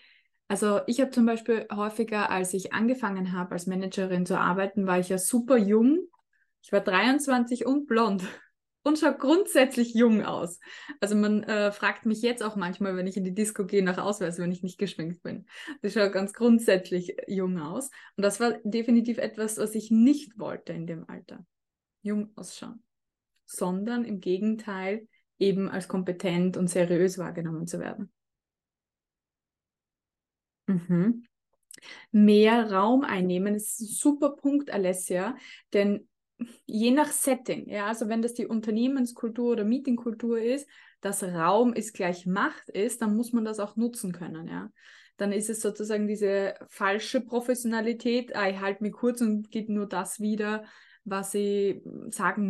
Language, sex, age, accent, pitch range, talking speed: German, female, 20-39, German, 195-235 Hz, 155 wpm